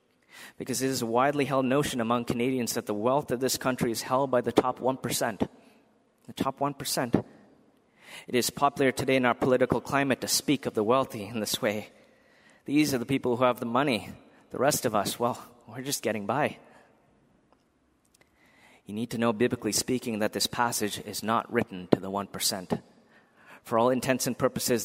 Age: 30-49